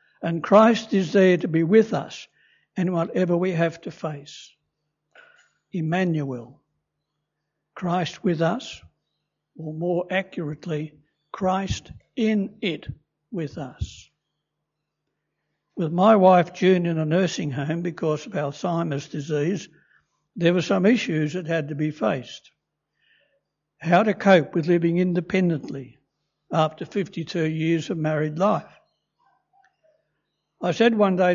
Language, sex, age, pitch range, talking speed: English, male, 60-79, 155-195 Hz, 120 wpm